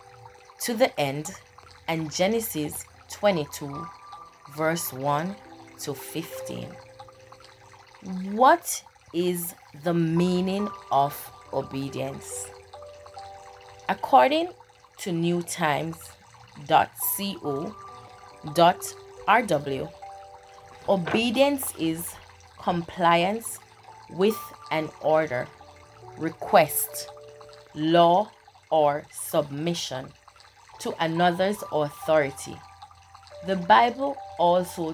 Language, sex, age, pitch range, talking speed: English, female, 30-49, 150-205 Hz, 60 wpm